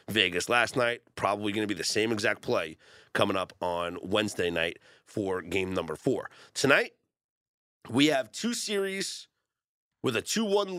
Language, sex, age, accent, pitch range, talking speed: English, male, 30-49, American, 105-145 Hz, 155 wpm